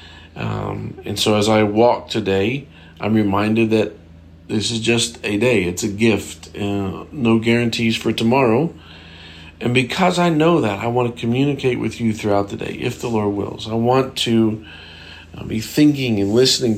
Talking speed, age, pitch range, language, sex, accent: 180 wpm, 50-69, 100-115 Hz, English, male, American